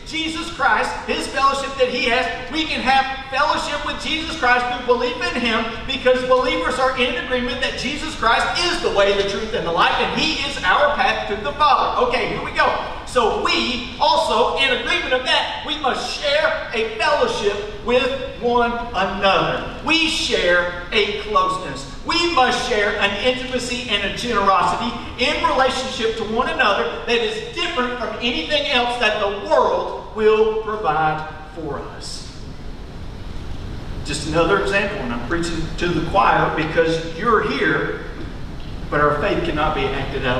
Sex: male